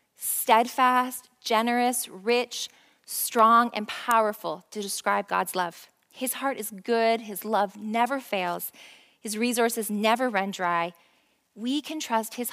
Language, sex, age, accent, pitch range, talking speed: English, female, 20-39, American, 190-230 Hz, 130 wpm